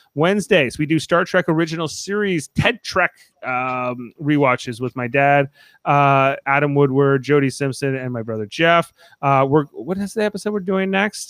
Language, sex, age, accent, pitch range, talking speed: English, male, 30-49, American, 125-160 Hz, 170 wpm